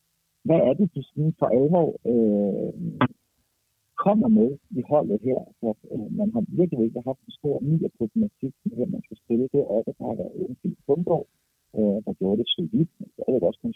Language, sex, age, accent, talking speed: Danish, male, 50-69, native, 210 wpm